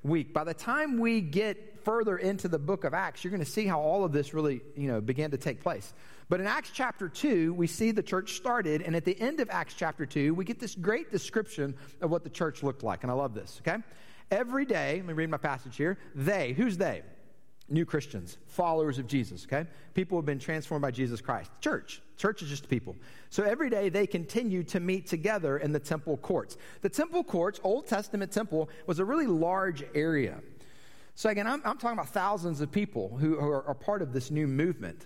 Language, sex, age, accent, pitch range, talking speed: English, male, 40-59, American, 150-205 Hz, 225 wpm